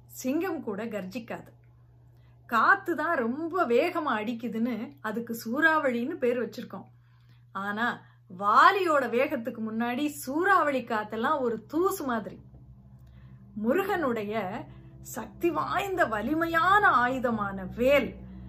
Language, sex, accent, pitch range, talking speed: Tamil, female, native, 205-290 Hz, 90 wpm